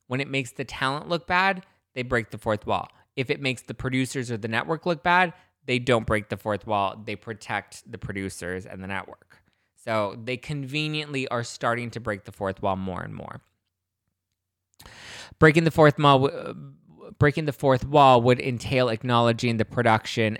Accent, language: American, English